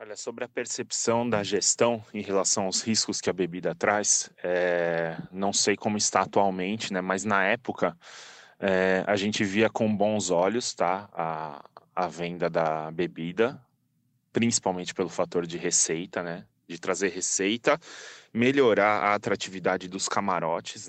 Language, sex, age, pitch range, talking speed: Portuguese, male, 20-39, 90-110 Hz, 140 wpm